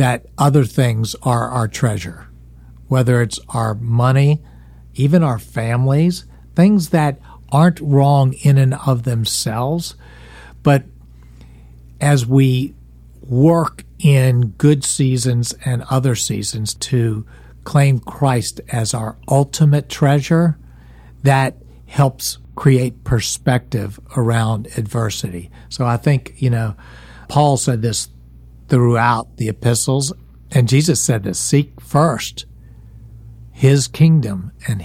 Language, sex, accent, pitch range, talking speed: English, male, American, 105-140 Hz, 110 wpm